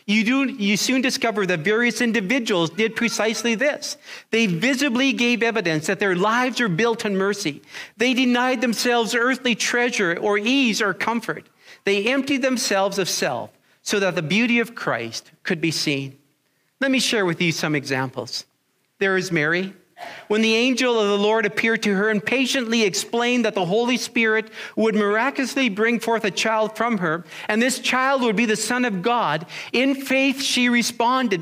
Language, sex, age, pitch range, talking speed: English, male, 40-59, 195-245 Hz, 175 wpm